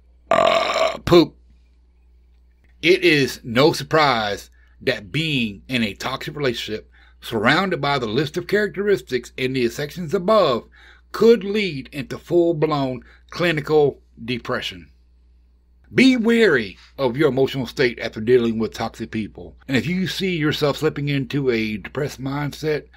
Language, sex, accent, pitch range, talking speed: English, male, American, 105-155 Hz, 130 wpm